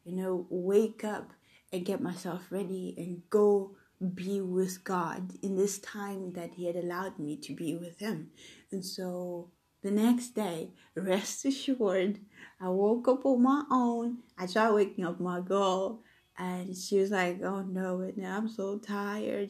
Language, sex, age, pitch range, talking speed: English, female, 20-39, 180-205 Hz, 165 wpm